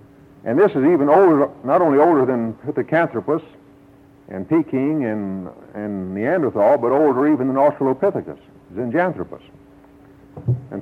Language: English